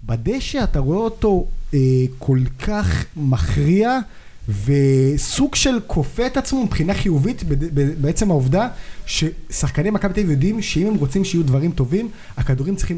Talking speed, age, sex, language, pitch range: 150 wpm, 30-49, male, Hebrew, 140-215 Hz